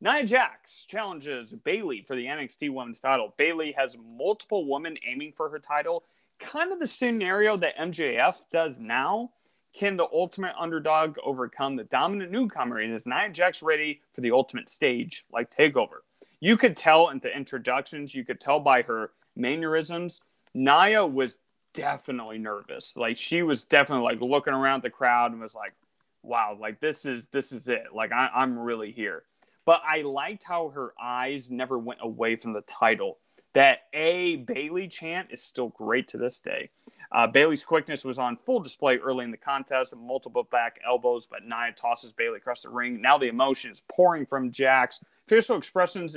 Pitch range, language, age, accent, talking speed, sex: 125-175 Hz, English, 30-49, American, 175 wpm, male